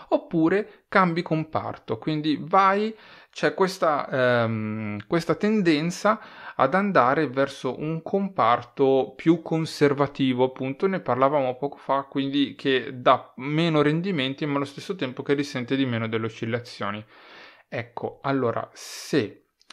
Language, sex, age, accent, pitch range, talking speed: Italian, male, 30-49, native, 115-155 Hz, 120 wpm